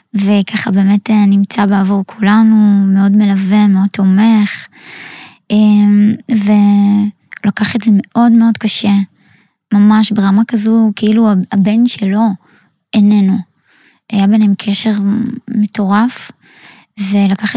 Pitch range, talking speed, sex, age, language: 200-230 Hz, 90 wpm, female, 20-39, Hebrew